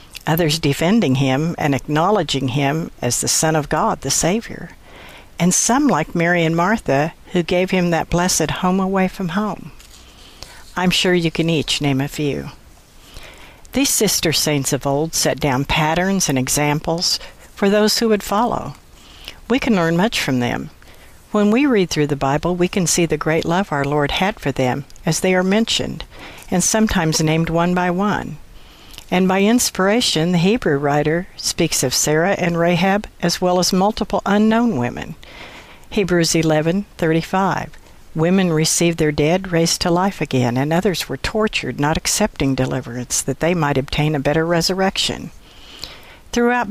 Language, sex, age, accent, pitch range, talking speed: English, female, 60-79, American, 150-195 Hz, 160 wpm